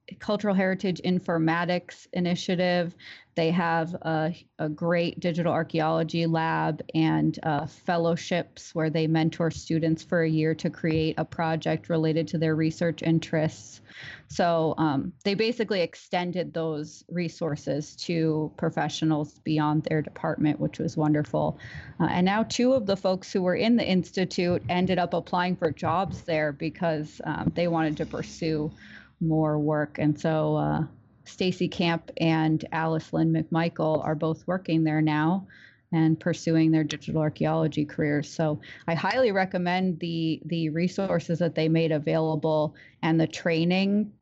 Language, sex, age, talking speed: English, female, 30-49, 145 wpm